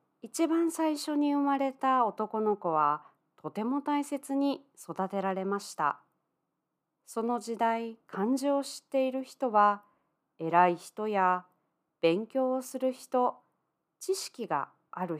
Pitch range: 185-260 Hz